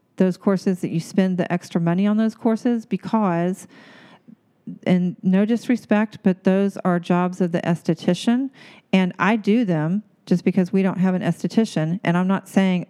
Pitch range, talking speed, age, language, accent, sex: 170-200 Hz, 170 wpm, 40-59, English, American, female